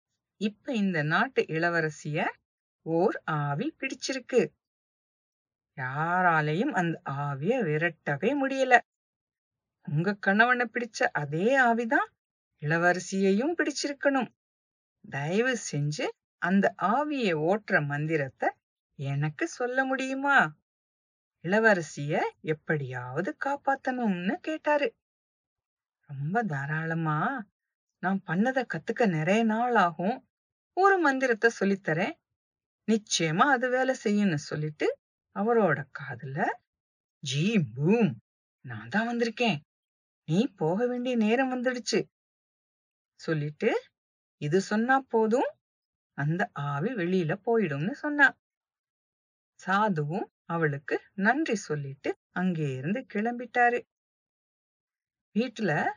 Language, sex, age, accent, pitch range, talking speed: English, female, 50-69, Indian, 155-245 Hz, 80 wpm